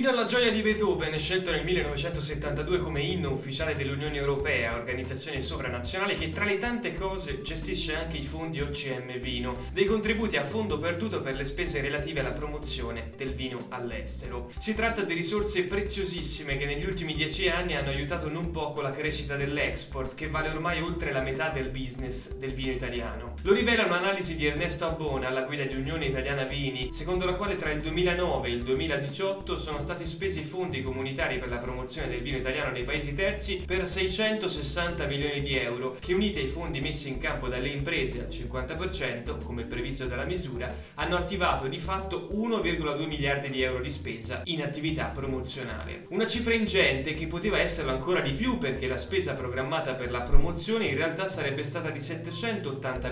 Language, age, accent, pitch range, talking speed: Italian, 20-39, native, 135-180 Hz, 180 wpm